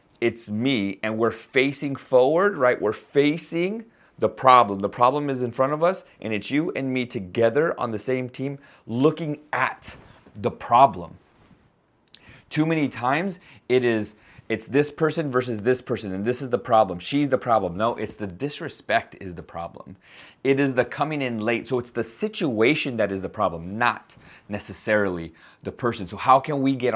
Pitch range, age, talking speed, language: 105-135 Hz, 30-49, 175 wpm, English